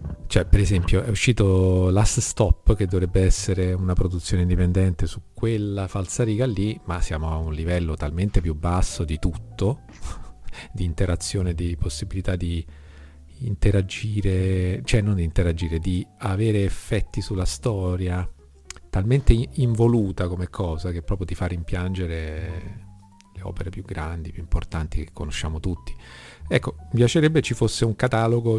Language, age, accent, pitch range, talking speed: Italian, 40-59, native, 85-105 Hz, 145 wpm